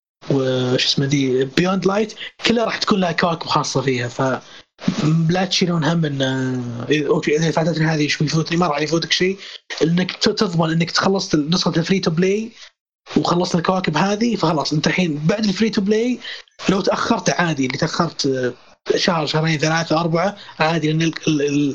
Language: Arabic